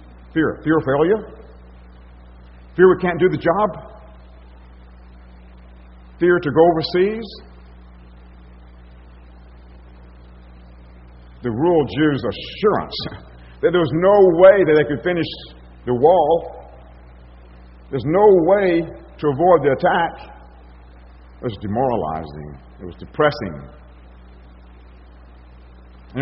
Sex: male